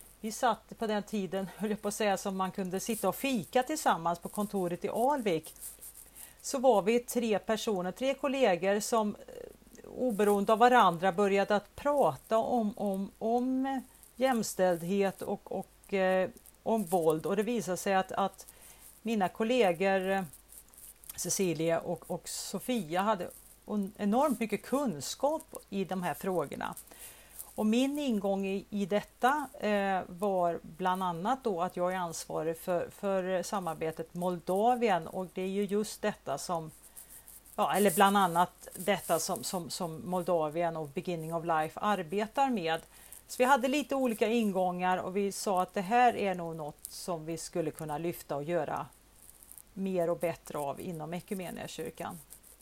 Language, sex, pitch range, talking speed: Swedish, female, 180-225 Hz, 150 wpm